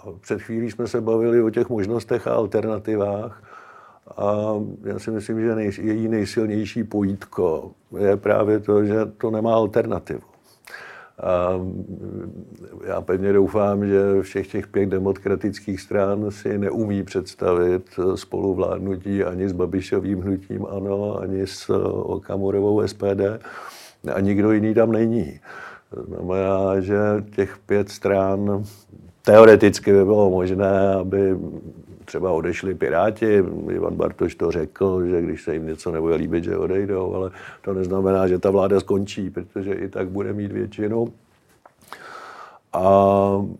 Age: 50-69